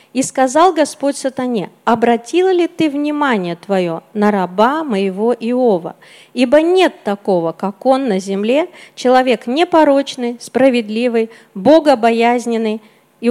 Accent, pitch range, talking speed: native, 210-290 Hz, 115 wpm